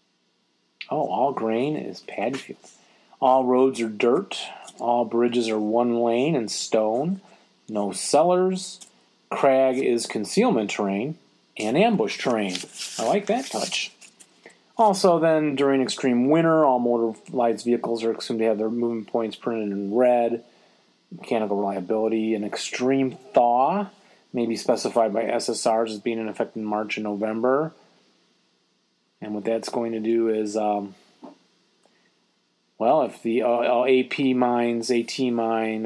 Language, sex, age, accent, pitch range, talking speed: English, male, 30-49, American, 110-135 Hz, 135 wpm